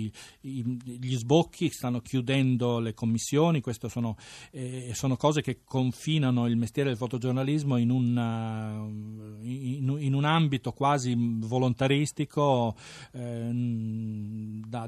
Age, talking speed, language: 40-59, 105 wpm, Italian